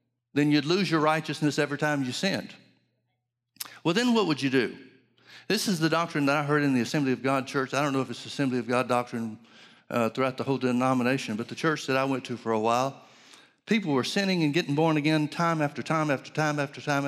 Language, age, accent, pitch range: English, 60-79, American, 130-170 Hz